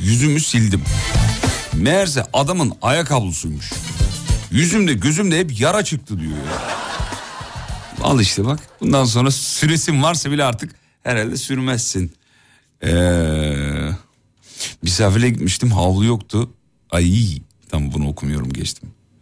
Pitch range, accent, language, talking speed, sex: 100-135 Hz, native, Turkish, 100 wpm, male